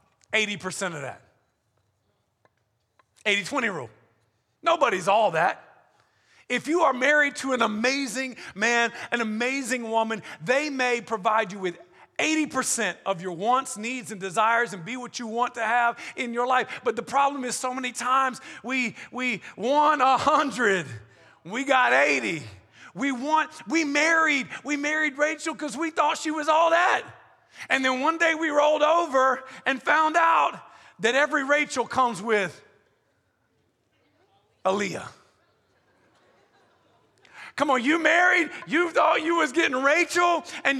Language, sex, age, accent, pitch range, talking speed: English, male, 40-59, American, 240-320 Hz, 145 wpm